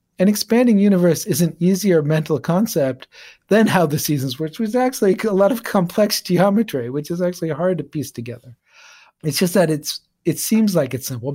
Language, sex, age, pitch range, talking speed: English, male, 40-59, 140-175 Hz, 195 wpm